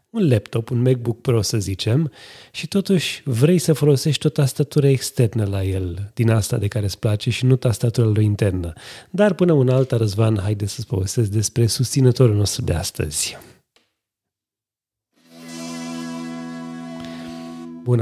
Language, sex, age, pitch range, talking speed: Romanian, male, 30-49, 105-130 Hz, 135 wpm